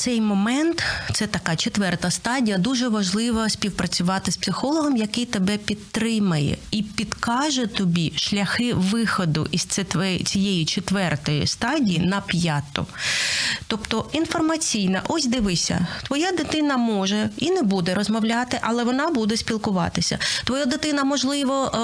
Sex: female